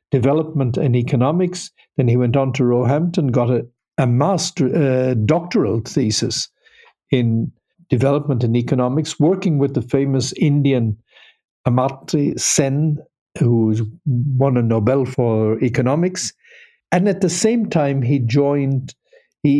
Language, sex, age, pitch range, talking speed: English, male, 60-79, 125-160 Hz, 125 wpm